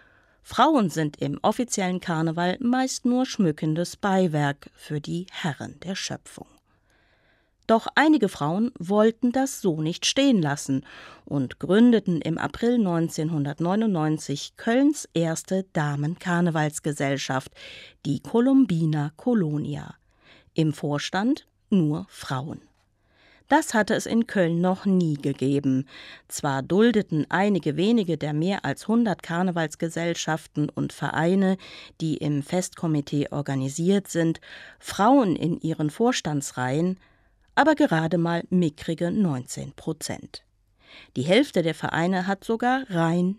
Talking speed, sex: 110 wpm, female